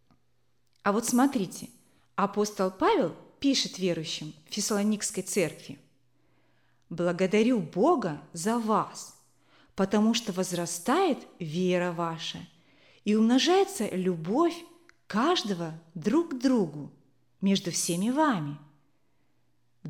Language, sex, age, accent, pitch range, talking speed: Russian, female, 30-49, native, 165-275 Hz, 90 wpm